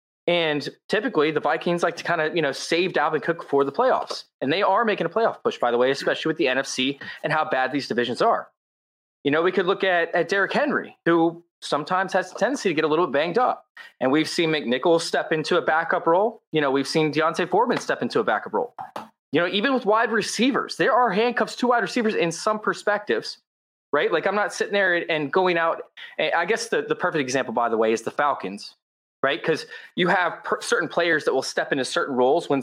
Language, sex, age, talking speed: English, male, 20-39, 230 wpm